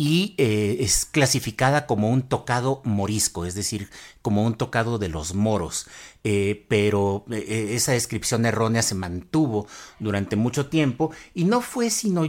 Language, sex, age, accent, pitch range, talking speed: Spanish, male, 50-69, Mexican, 105-145 Hz, 150 wpm